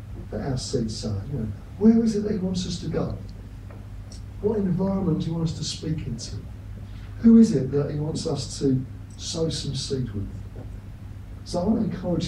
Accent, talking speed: British, 200 wpm